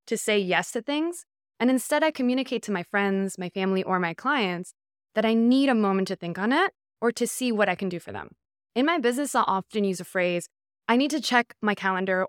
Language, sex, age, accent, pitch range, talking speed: English, female, 20-39, American, 190-240 Hz, 240 wpm